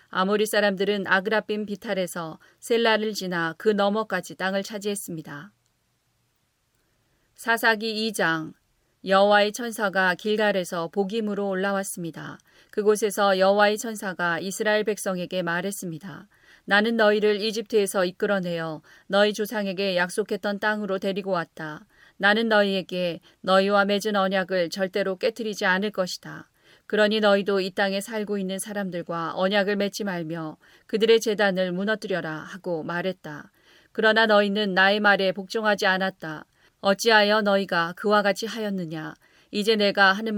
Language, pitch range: Korean, 185-215 Hz